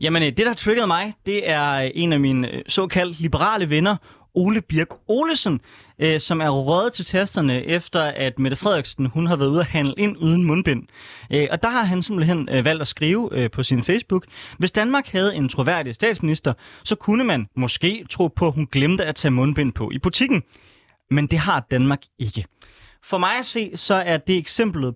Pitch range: 140-195 Hz